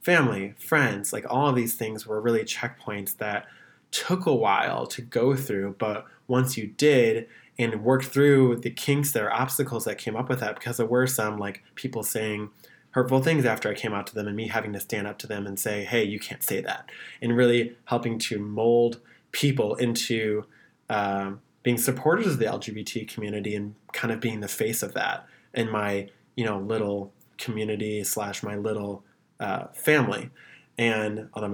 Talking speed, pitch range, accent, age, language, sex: 190 wpm, 105-125 Hz, American, 20-39, English, male